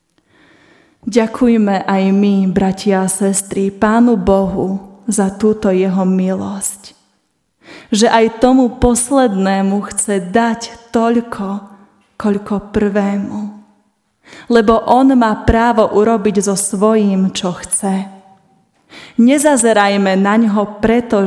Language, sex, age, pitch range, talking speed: Slovak, female, 20-39, 195-230 Hz, 95 wpm